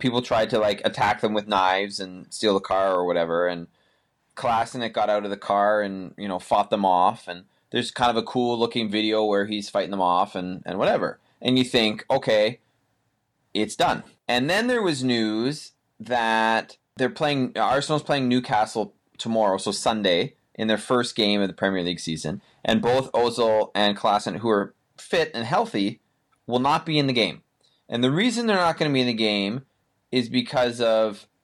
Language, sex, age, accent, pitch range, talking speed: English, male, 30-49, American, 105-140 Hz, 195 wpm